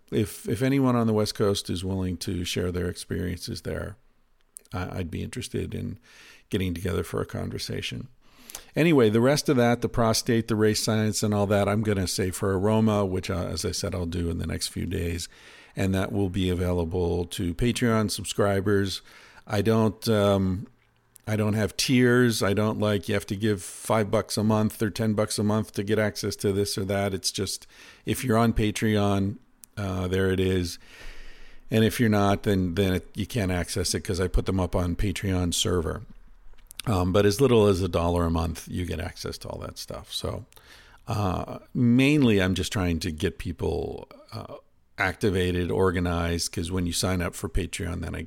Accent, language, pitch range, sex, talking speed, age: American, English, 90-110 Hz, male, 195 wpm, 50-69